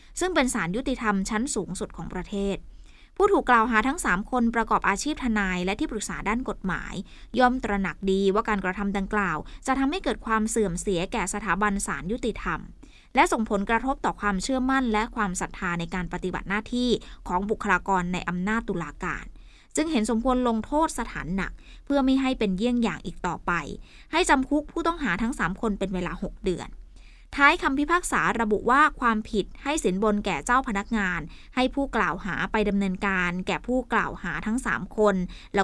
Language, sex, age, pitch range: Thai, female, 20-39, 195-255 Hz